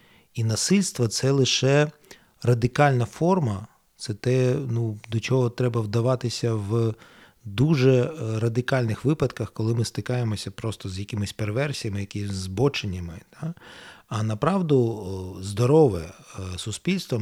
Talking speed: 110 wpm